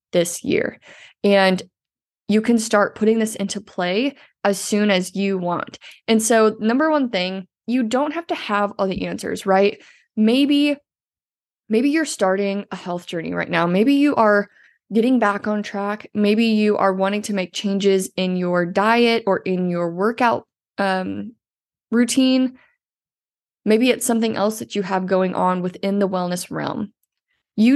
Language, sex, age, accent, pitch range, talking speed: English, female, 20-39, American, 185-225 Hz, 160 wpm